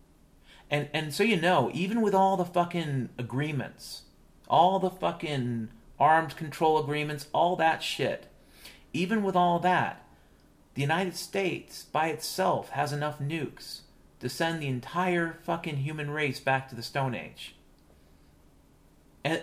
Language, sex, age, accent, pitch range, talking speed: English, male, 40-59, American, 120-170 Hz, 140 wpm